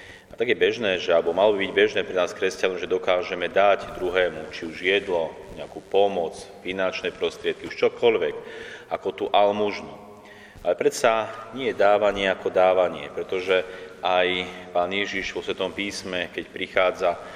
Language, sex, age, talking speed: Slovak, male, 30-49, 150 wpm